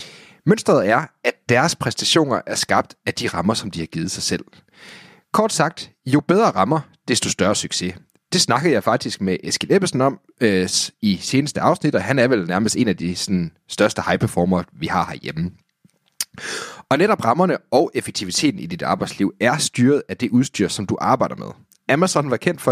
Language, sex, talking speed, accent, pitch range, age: Danish, male, 190 wpm, native, 95-150 Hz, 30-49